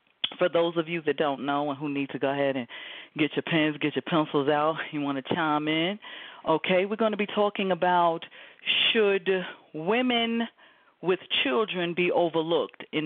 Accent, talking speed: American, 185 wpm